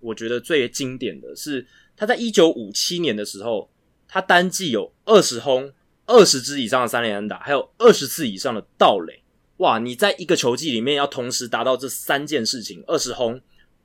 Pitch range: 115-170 Hz